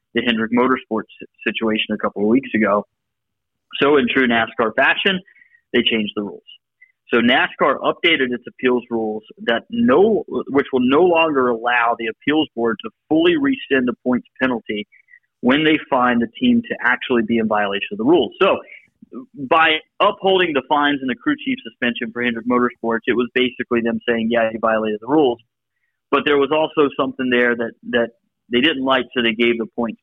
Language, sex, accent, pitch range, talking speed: English, male, American, 110-155 Hz, 185 wpm